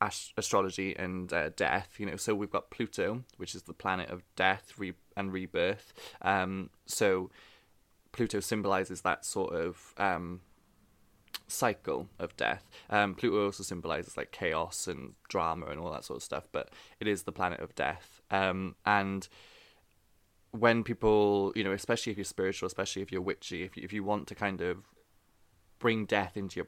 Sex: male